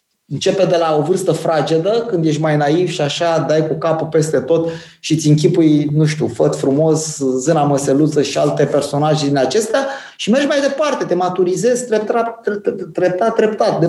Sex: male